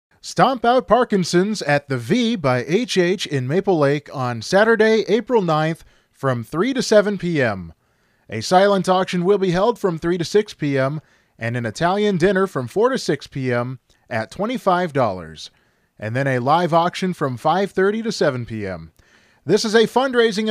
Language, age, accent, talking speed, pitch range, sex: English, 30-49, American, 165 wpm, 135-220 Hz, male